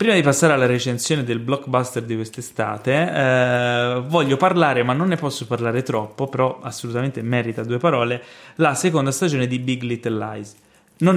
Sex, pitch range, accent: male, 115-135 Hz, native